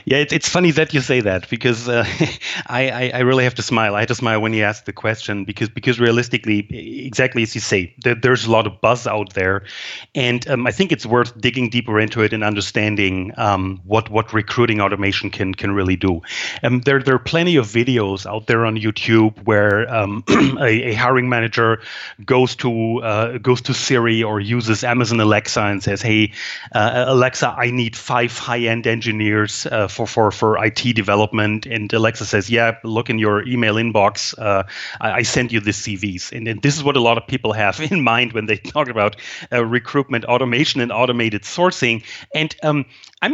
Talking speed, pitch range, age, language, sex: 200 wpm, 105-125 Hz, 30-49, English, male